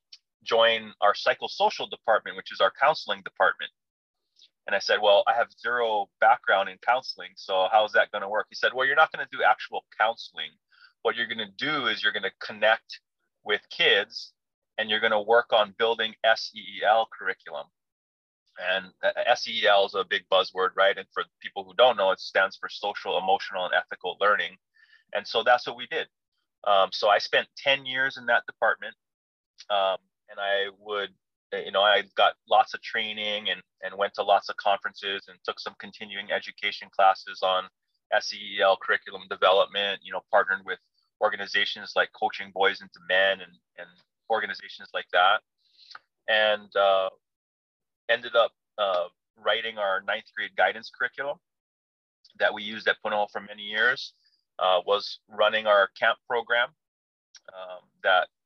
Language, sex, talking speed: English, male, 160 wpm